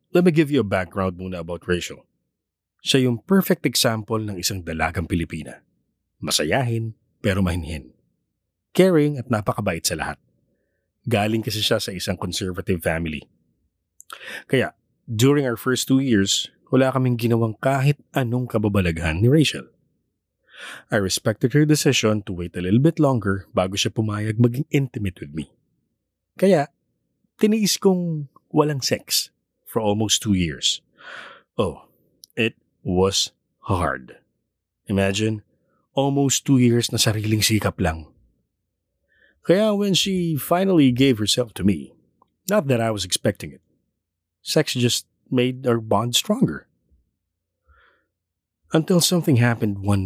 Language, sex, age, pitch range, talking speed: Filipino, male, 20-39, 95-135 Hz, 130 wpm